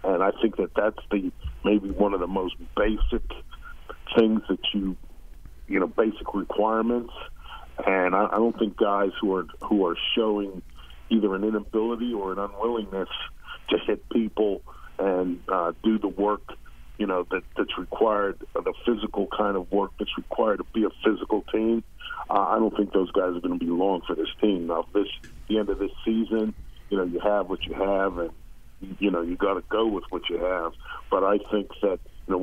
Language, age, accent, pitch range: English, 50-69, American, 90-110 Hz